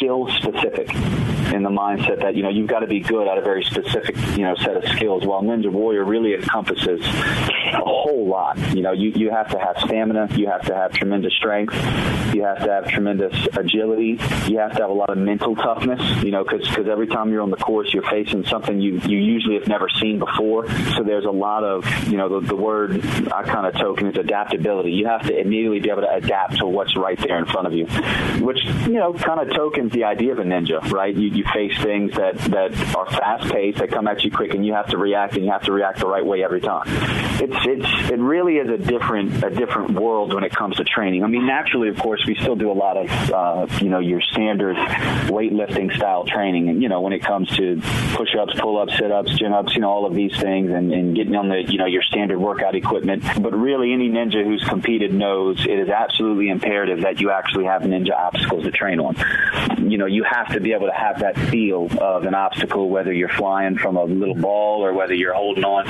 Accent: American